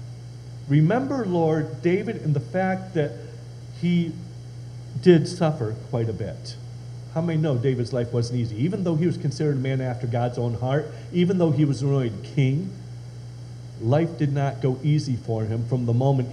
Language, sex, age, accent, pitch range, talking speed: English, male, 50-69, American, 120-155 Hz, 175 wpm